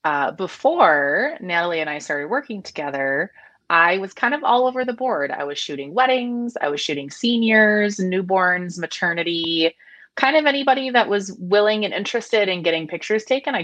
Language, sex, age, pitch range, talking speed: English, female, 20-39, 150-205 Hz, 170 wpm